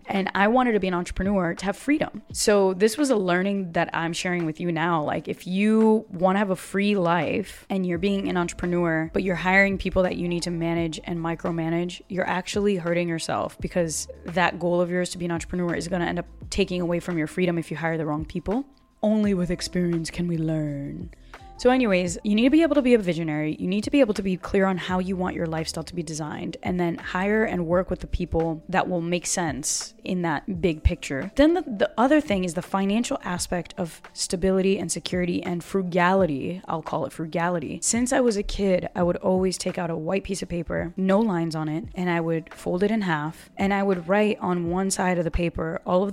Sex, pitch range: female, 170-195 Hz